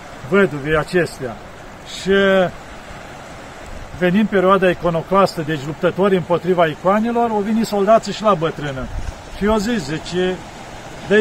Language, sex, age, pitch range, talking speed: Romanian, male, 40-59, 175-210 Hz, 110 wpm